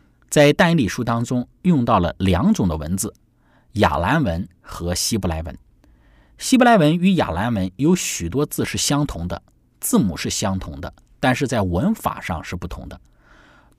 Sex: male